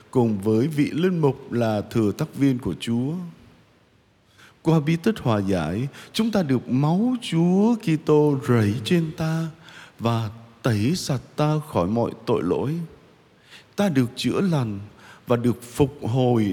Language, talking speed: Vietnamese, 155 wpm